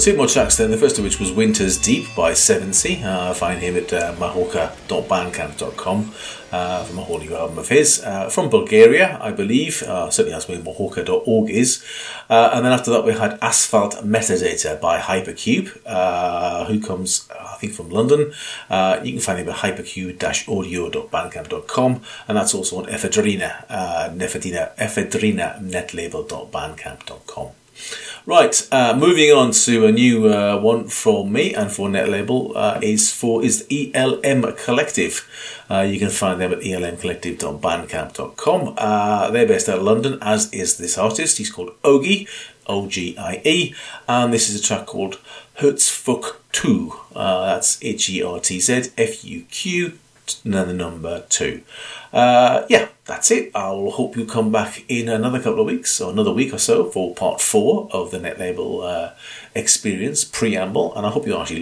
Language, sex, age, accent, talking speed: English, male, 40-59, British, 160 wpm